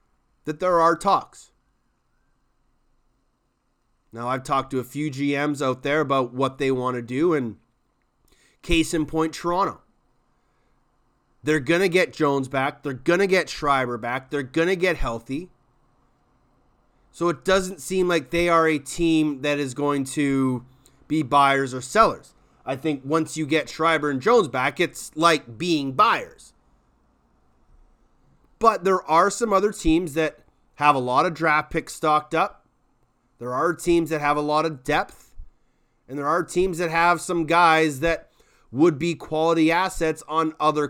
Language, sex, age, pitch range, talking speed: English, male, 30-49, 135-170 Hz, 160 wpm